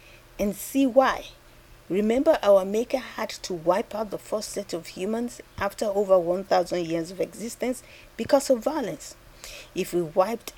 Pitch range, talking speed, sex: 175-235 Hz, 155 wpm, female